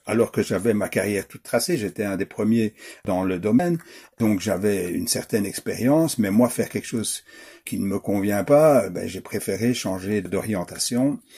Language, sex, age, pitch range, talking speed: French, male, 60-79, 100-130 Hz, 180 wpm